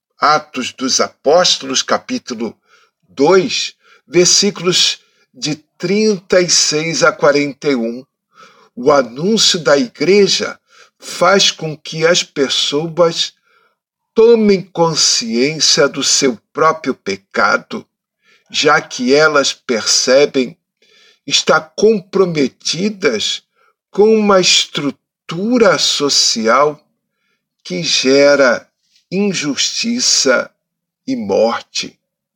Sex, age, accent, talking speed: male, 60-79, Brazilian, 75 wpm